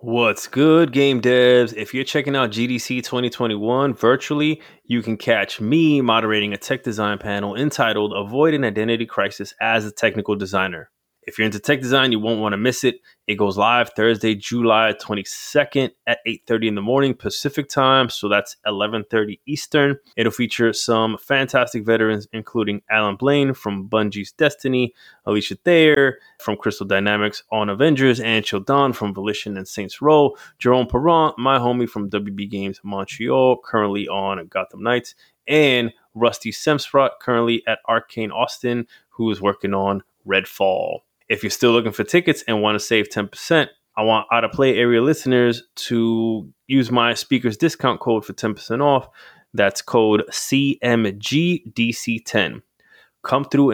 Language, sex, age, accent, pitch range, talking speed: English, male, 20-39, American, 105-135 Hz, 155 wpm